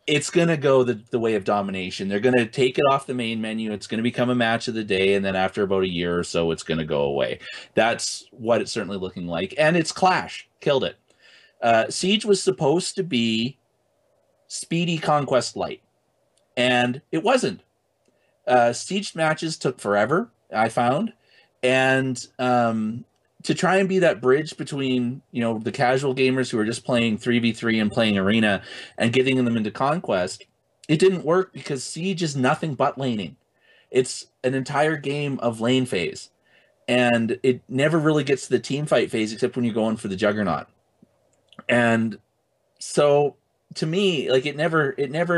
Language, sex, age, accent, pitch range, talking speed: English, male, 30-49, American, 110-155 Hz, 185 wpm